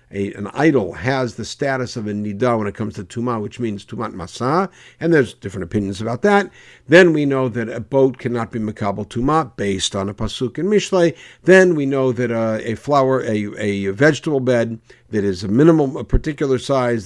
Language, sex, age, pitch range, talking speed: English, male, 60-79, 110-135 Hz, 205 wpm